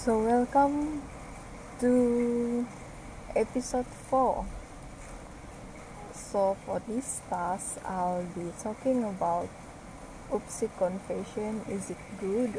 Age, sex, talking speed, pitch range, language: 20-39, female, 85 wpm, 190-225 Hz, English